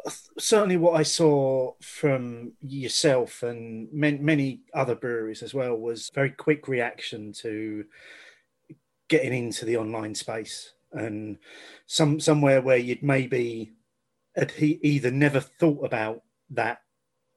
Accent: British